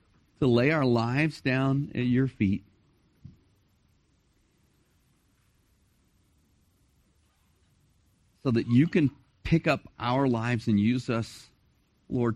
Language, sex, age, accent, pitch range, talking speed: English, male, 40-59, American, 100-125 Hz, 95 wpm